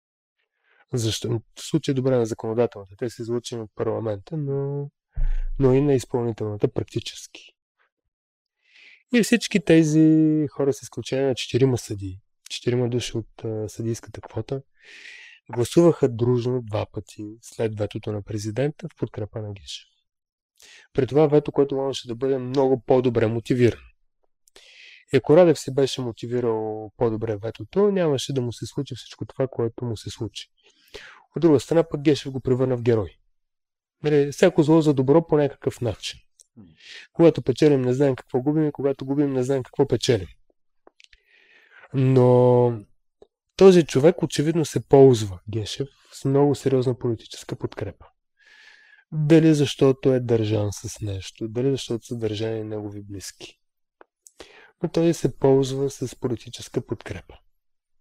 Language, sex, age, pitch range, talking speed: Bulgarian, male, 20-39, 115-145 Hz, 140 wpm